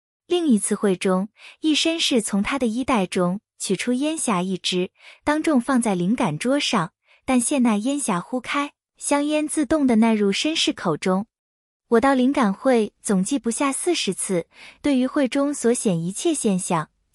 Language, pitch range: Chinese, 195-275 Hz